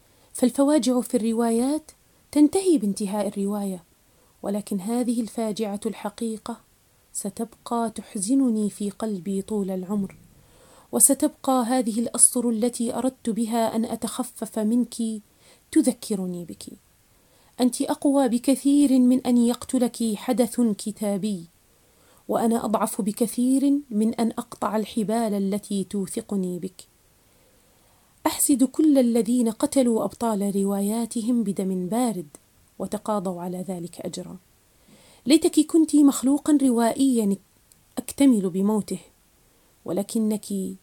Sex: female